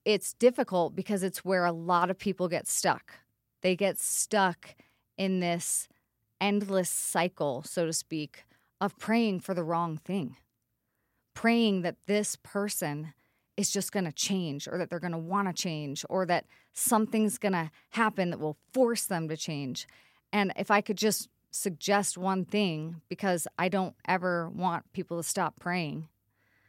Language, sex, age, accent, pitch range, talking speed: English, female, 30-49, American, 160-205 Hz, 165 wpm